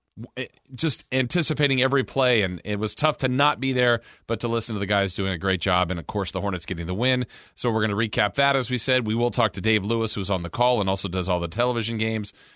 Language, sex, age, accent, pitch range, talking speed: English, male, 40-59, American, 110-145 Hz, 270 wpm